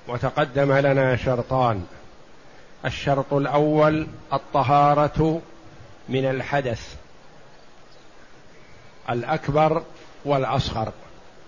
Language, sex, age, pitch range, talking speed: Arabic, male, 50-69, 135-160 Hz, 50 wpm